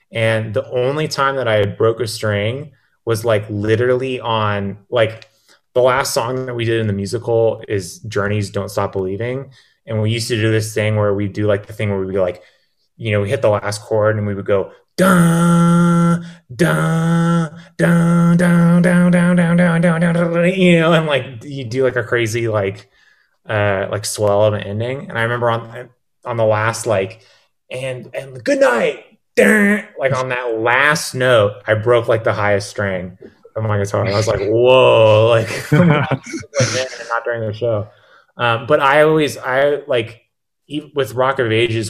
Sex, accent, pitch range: male, American, 105-135 Hz